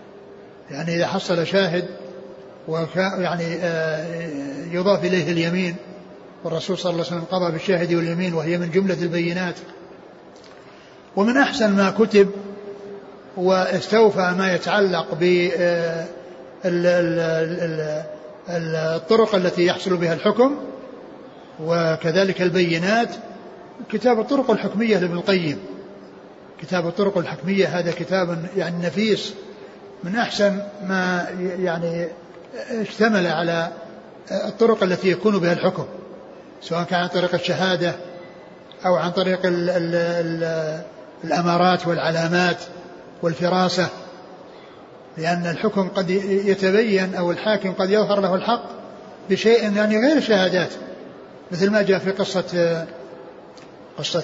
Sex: male